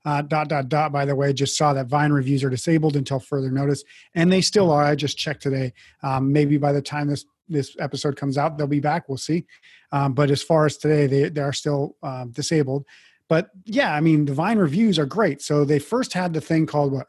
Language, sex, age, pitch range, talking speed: English, male, 30-49, 140-160 Hz, 240 wpm